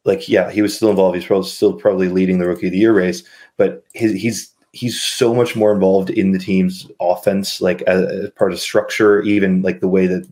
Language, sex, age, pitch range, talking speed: English, male, 20-39, 95-110 Hz, 235 wpm